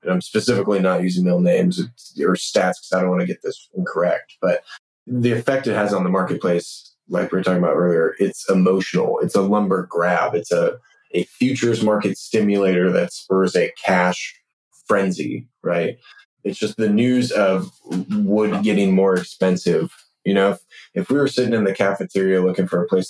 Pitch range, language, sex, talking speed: 95-115 Hz, English, male, 185 wpm